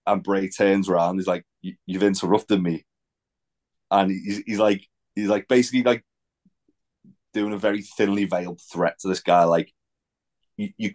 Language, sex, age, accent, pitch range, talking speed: English, male, 30-49, British, 90-105 Hz, 155 wpm